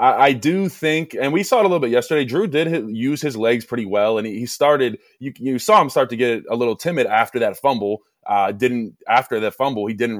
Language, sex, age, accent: English, male, 20-39, American